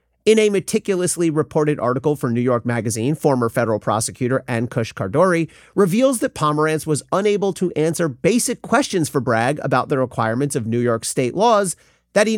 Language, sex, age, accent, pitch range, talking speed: English, male, 40-59, American, 125-200 Hz, 175 wpm